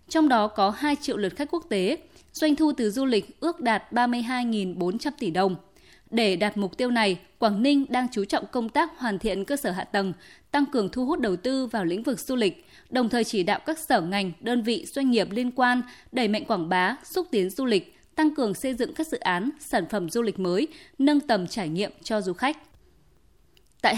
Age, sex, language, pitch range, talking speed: 20-39, female, Vietnamese, 200-270 Hz, 225 wpm